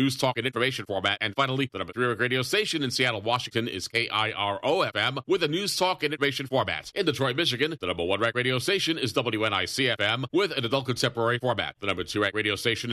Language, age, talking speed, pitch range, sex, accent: English, 40-59, 225 wpm, 115-150 Hz, male, American